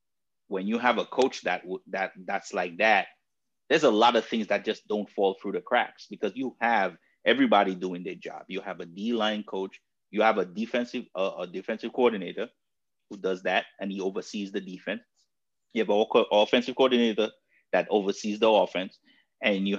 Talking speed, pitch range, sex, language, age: 190 wpm, 100-130 Hz, male, English, 30-49